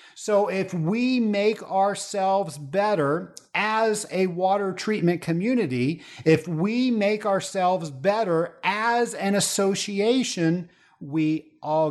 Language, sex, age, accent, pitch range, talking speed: English, male, 50-69, American, 140-200 Hz, 105 wpm